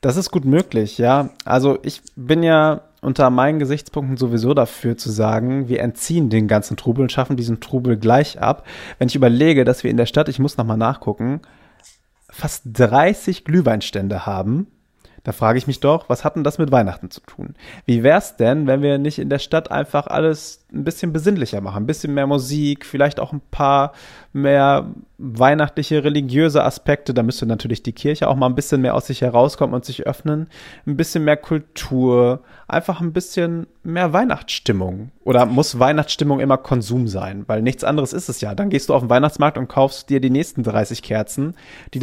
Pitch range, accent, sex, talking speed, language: 120-150 Hz, German, male, 195 wpm, German